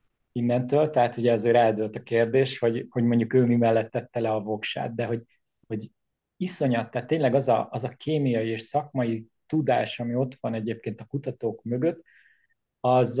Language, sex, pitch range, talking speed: Hungarian, male, 115-135 Hz, 175 wpm